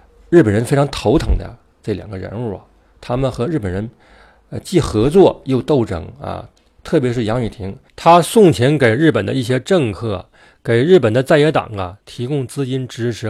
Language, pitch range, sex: Chinese, 105-140 Hz, male